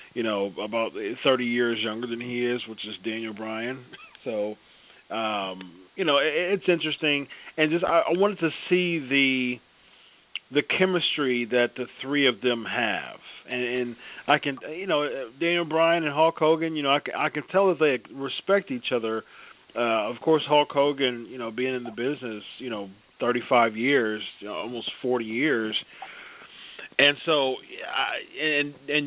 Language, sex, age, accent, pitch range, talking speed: English, male, 40-59, American, 120-150 Hz, 170 wpm